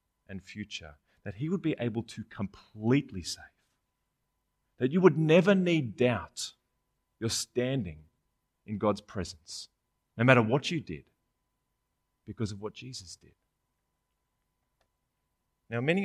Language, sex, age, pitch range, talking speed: English, male, 30-49, 100-135 Hz, 125 wpm